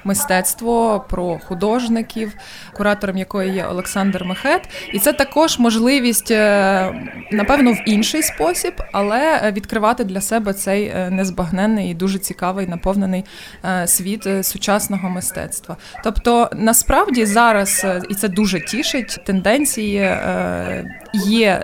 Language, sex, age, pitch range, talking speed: Ukrainian, female, 20-39, 185-225 Hz, 105 wpm